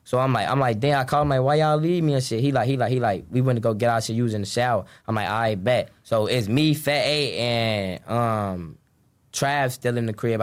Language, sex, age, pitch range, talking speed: English, male, 10-29, 110-130 Hz, 290 wpm